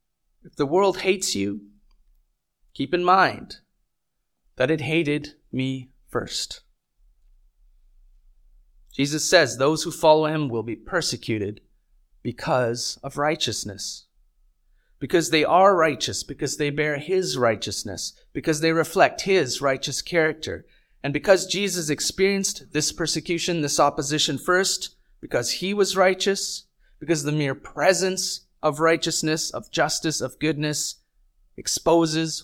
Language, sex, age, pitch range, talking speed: English, male, 30-49, 130-180 Hz, 120 wpm